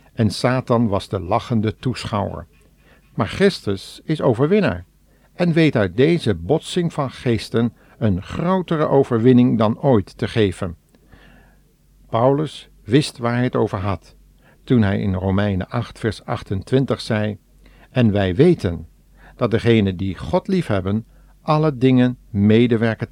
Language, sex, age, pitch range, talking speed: Dutch, male, 60-79, 100-130 Hz, 130 wpm